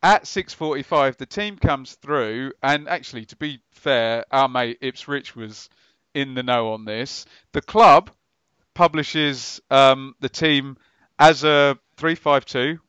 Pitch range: 125-160 Hz